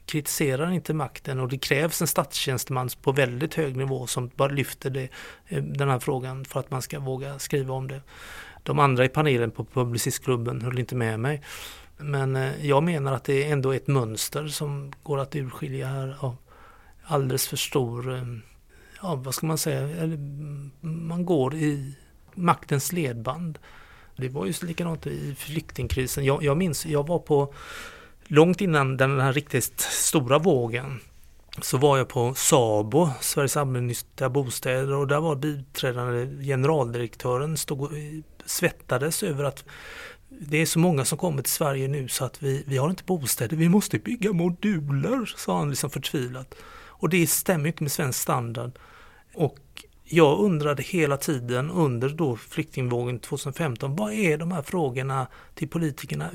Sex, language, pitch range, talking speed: male, Swedish, 130-160 Hz, 160 wpm